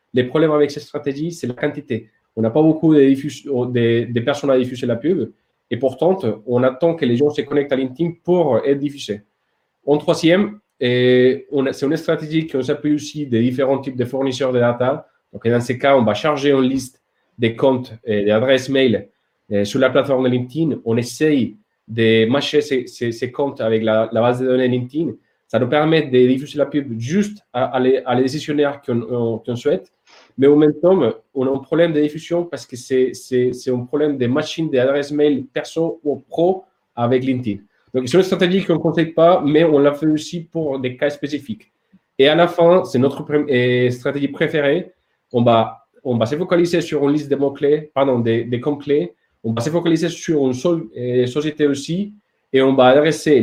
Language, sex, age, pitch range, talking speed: French, male, 30-49, 125-155 Hz, 205 wpm